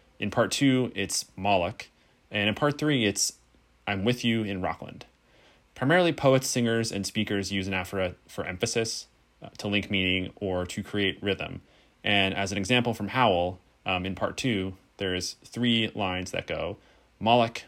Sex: male